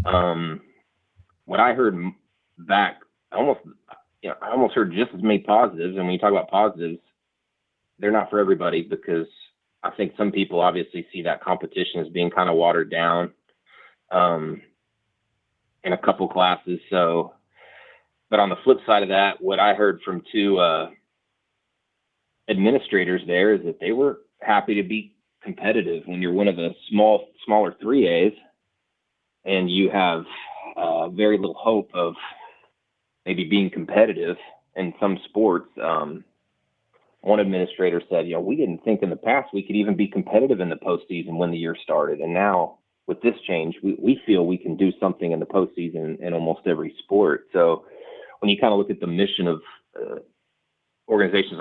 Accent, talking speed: American, 170 wpm